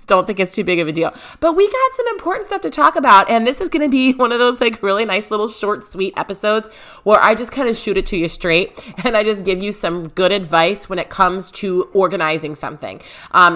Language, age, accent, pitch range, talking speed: English, 30-49, American, 185-270 Hz, 255 wpm